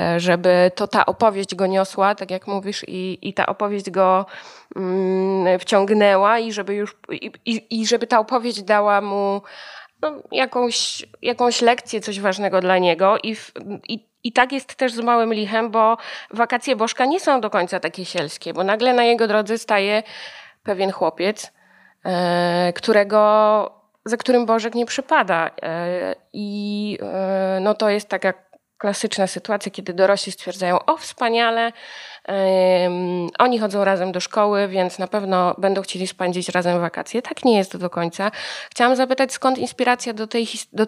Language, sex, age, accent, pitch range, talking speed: Polish, female, 20-39, native, 185-230 Hz, 140 wpm